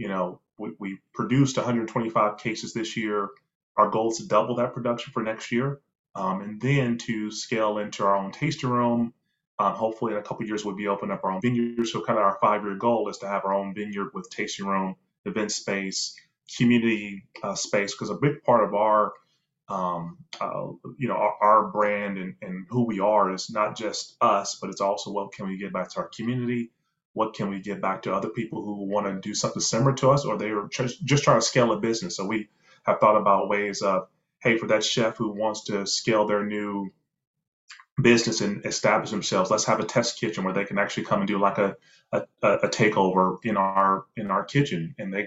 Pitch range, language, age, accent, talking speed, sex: 100-120 Hz, English, 30-49, American, 220 wpm, male